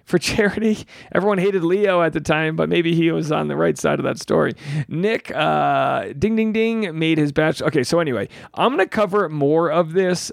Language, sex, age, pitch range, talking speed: English, male, 40-59, 140-195 Hz, 215 wpm